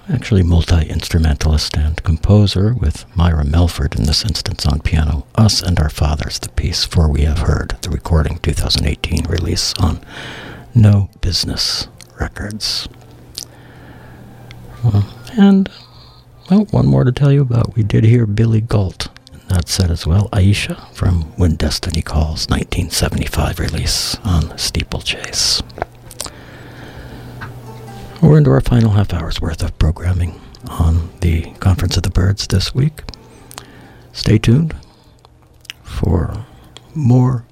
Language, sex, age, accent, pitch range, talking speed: English, male, 60-79, American, 85-120 Hz, 125 wpm